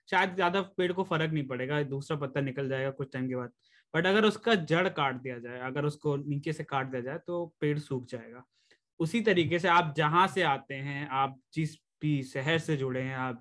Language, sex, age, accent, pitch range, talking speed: English, male, 20-39, Indian, 140-175 Hz, 220 wpm